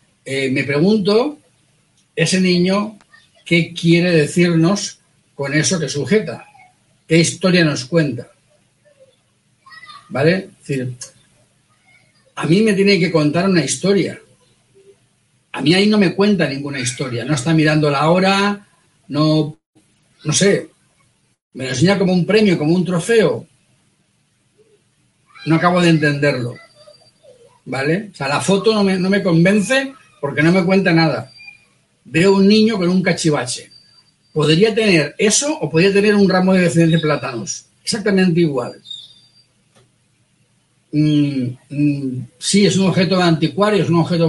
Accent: Spanish